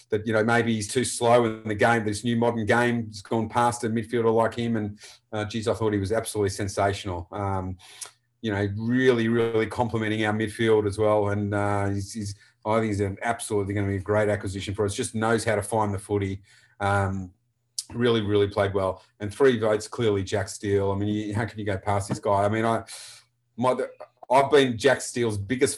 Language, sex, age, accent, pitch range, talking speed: English, male, 30-49, Australian, 105-115 Hz, 215 wpm